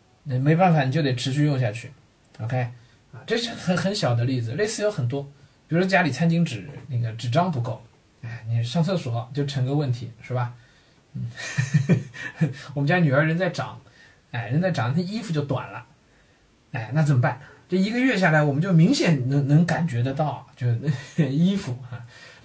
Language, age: Chinese, 20-39